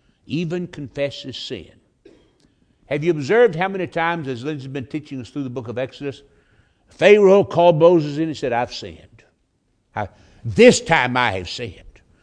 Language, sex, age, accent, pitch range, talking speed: English, male, 60-79, American, 125-185 Hz, 160 wpm